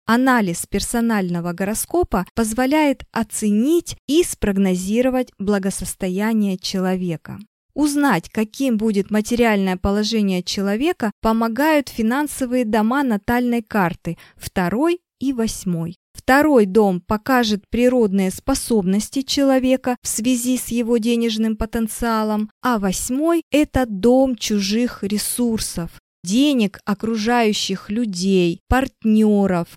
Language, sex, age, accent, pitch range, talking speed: Russian, female, 20-39, native, 200-260 Hz, 95 wpm